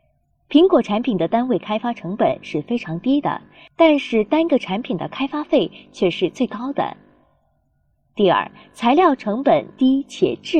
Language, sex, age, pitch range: Chinese, female, 20-39, 175-265 Hz